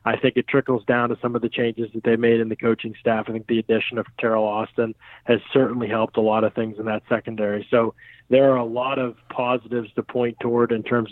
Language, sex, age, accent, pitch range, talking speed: English, male, 20-39, American, 115-125 Hz, 250 wpm